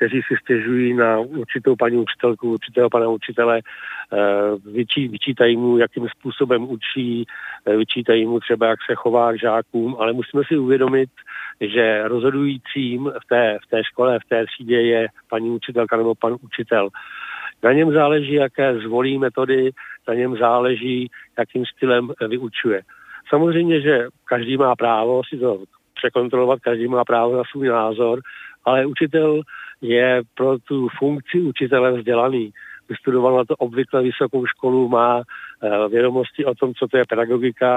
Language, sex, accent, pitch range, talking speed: Czech, male, native, 115-135 Hz, 145 wpm